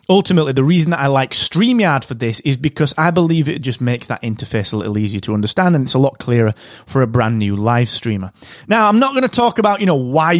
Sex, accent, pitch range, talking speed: male, British, 130-170 Hz, 255 wpm